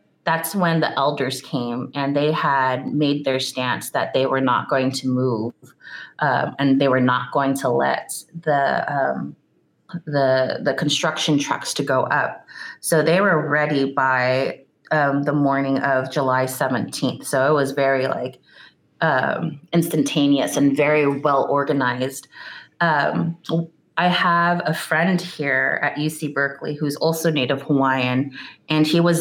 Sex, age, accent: female, 30-49, American